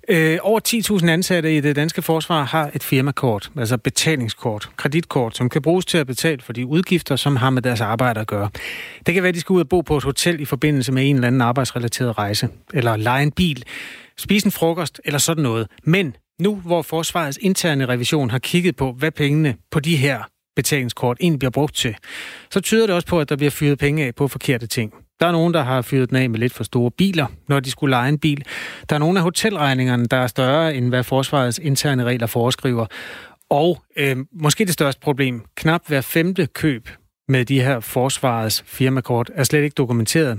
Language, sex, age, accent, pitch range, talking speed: Danish, male, 30-49, native, 125-165 Hz, 215 wpm